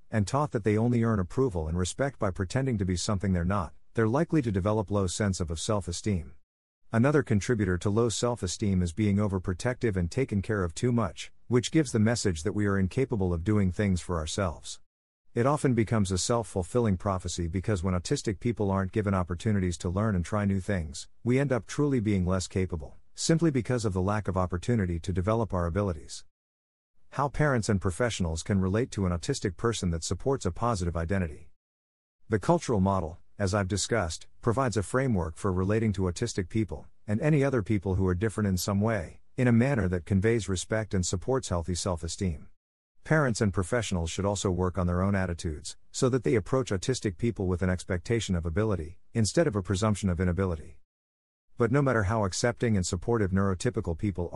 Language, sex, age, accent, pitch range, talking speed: English, male, 50-69, American, 90-115 Hz, 190 wpm